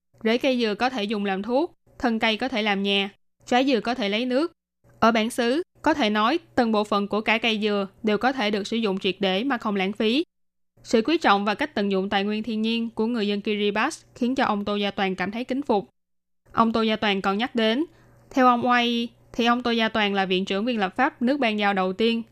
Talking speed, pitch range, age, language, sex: 260 wpm, 200-240 Hz, 10-29, Vietnamese, female